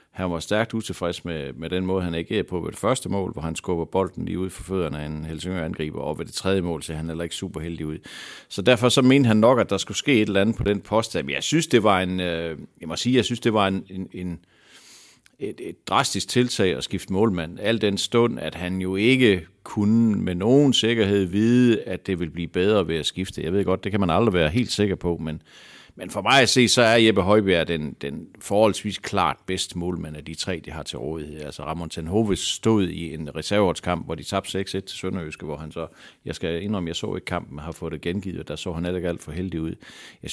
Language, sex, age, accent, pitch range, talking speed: Danish, male, 60-79, native, 85-105 Hz, 250 wpm